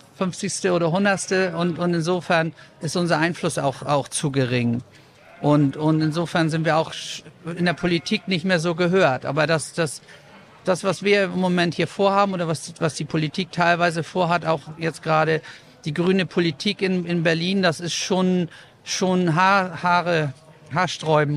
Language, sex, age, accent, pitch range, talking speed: German, male, 50-69, German, 150-180 Hz, 165 wpm